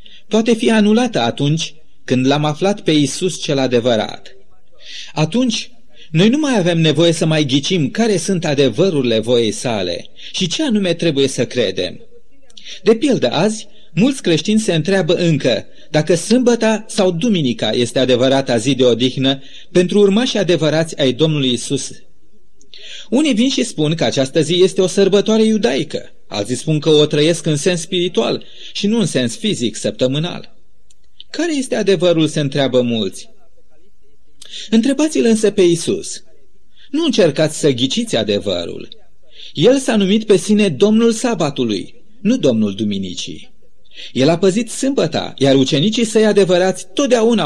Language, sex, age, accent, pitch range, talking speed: Romanian, male, 30-49, native, 140-220 Hz, 145 wpm